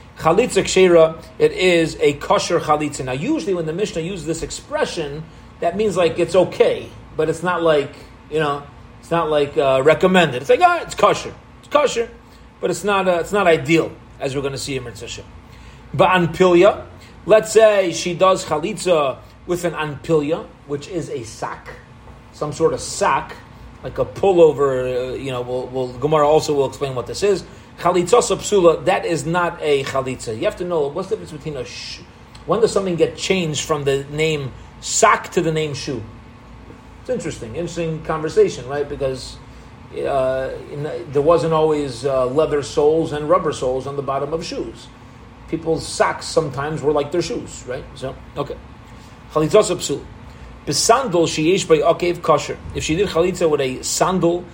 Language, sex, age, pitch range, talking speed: English, male, 30-49, 140-180 Hz, 170 wpm